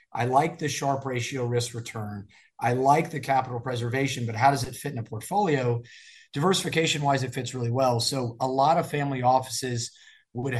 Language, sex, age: English, male, 30-49